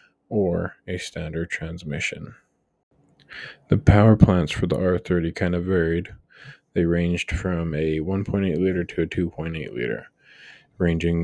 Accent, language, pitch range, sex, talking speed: American, English, 80-90 Hz, male, 130 wpm